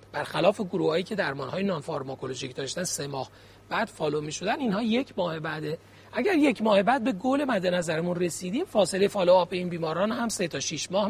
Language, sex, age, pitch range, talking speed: Persian, male, 40-59, 145-225 Hz, 195 wpm